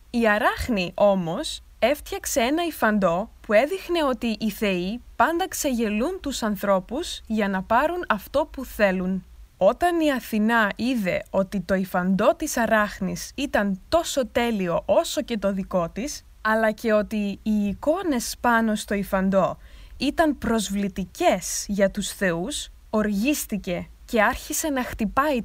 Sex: female